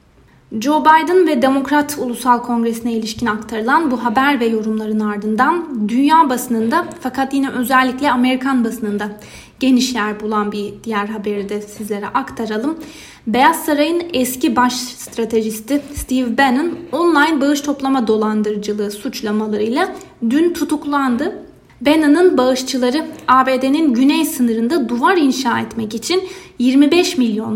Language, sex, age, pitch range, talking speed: Turkish, female, 20-39, 225-290 Hz, 120 wpm